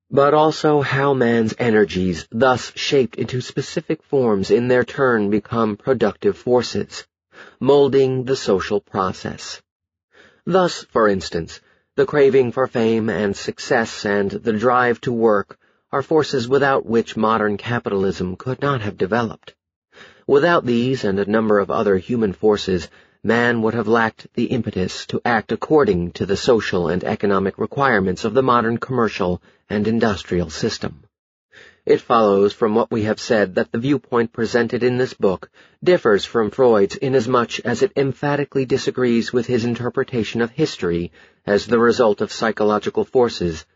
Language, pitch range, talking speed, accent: English, 105-135 Hz, 150 wpm, American